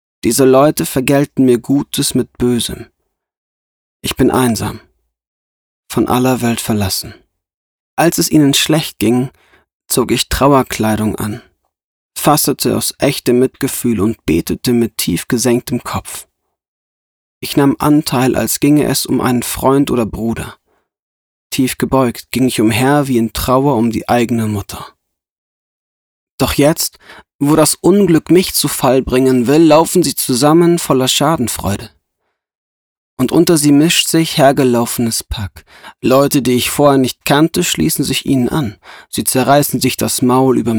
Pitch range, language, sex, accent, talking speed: 110-140 Hz, German, male, German, 140 wpm